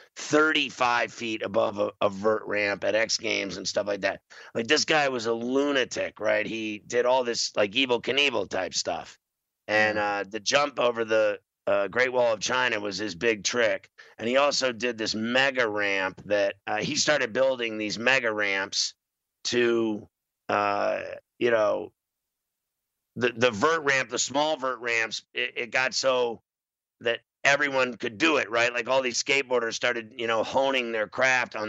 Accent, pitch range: American, 110-130 Hz